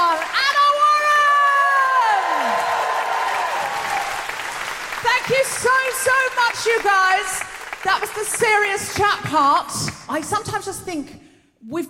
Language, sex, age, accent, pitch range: English, female, 40-59, British, 230-300 Hz